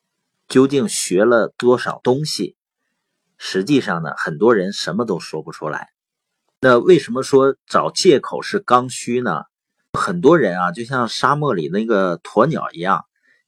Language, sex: Chinese, male